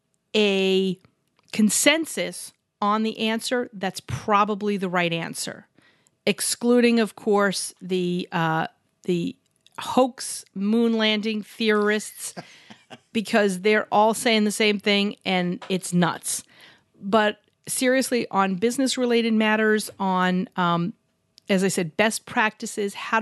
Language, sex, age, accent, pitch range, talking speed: English, female, 40-59, American, 195-235 Hz, 110 wpm